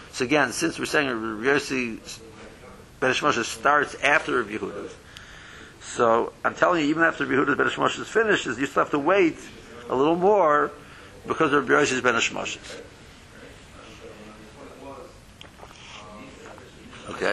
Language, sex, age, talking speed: English, male, 60-79, 110 wpm